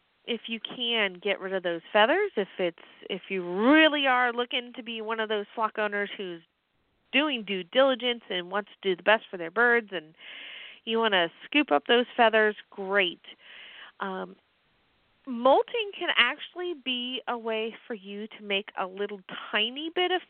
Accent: American